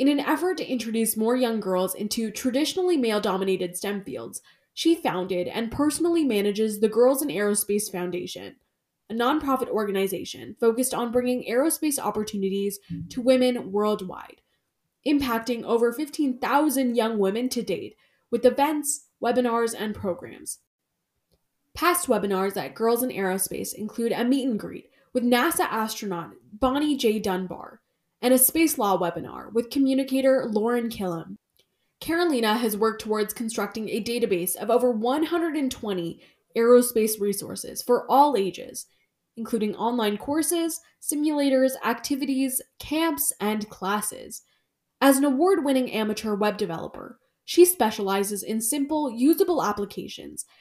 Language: English